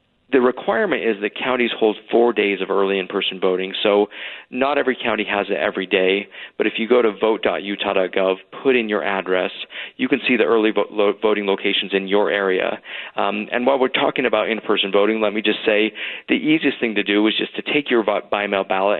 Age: 40-59